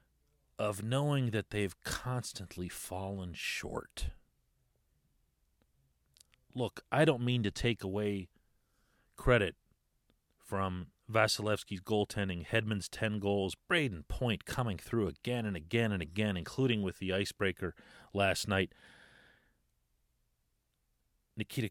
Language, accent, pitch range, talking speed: English, American, 75-105 Hz, 100 wpm